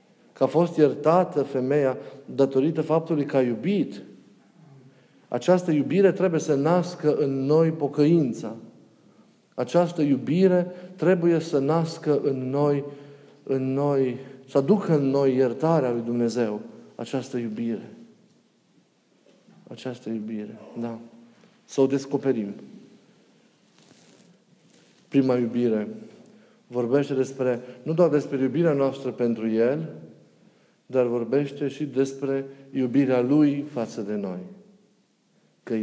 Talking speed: 105 wpm